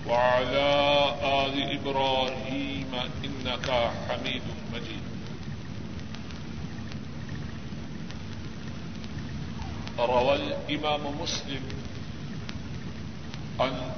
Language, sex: Urdu, male